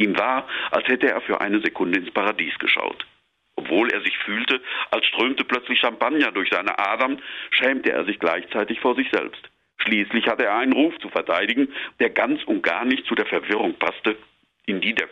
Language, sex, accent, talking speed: German, male, German, 190 wpm